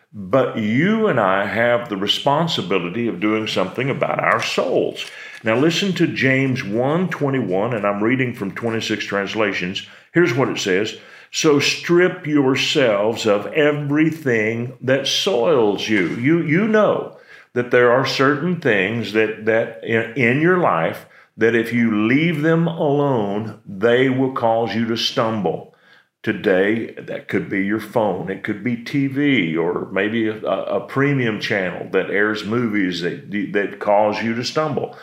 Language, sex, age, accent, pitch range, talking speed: English, male, 50-69, American, 110-140 Hz, 145 wpm